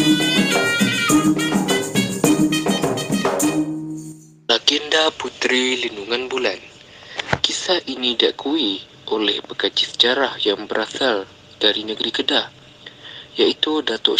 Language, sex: Malay, male